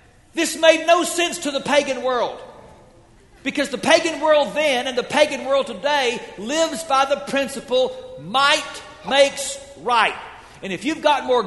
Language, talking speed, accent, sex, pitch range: English, 155 wpm, American, male, 235-315 Hz